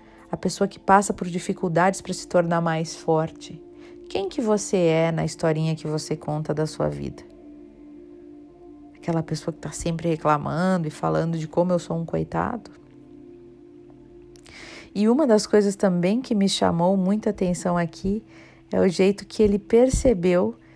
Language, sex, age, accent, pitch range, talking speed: Portuguese, female, 40-59, Brazilian, 165-220 Hz, 155 wpm